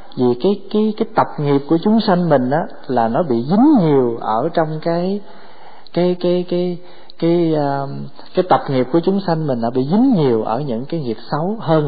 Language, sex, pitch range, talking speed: Vietnamese, male, 120-170 Hz, 205 wpm